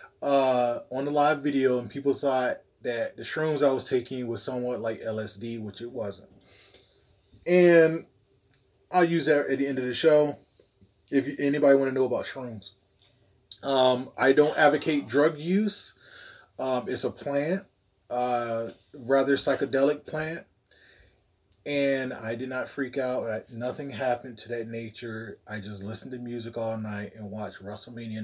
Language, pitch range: English, 110-140 Hz